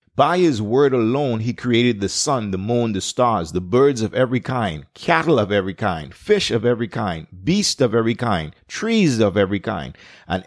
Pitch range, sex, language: 115-150 Hz, male, English